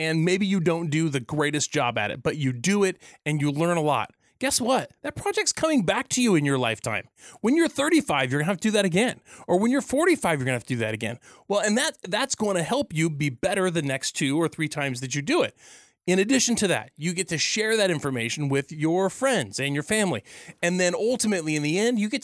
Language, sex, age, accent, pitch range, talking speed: English, male, 30-49, American, 150-200 Hz, 260 wpm